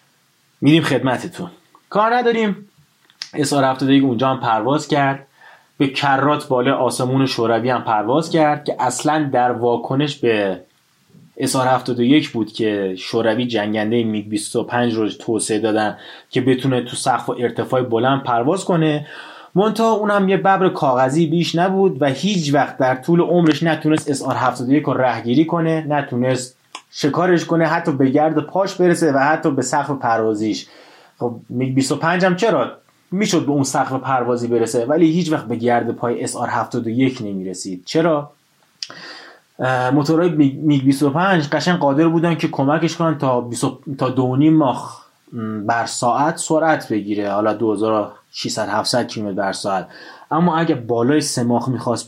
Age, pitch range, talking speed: 30-49, 120-155 Hz, 140 wpm